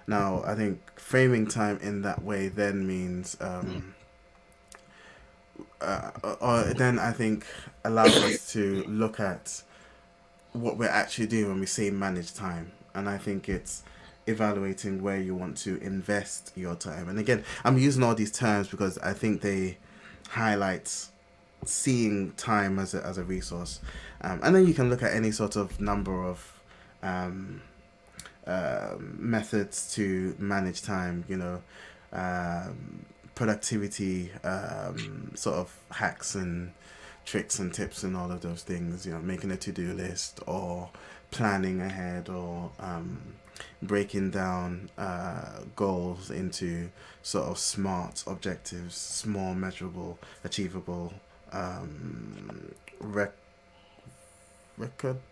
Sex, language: male, English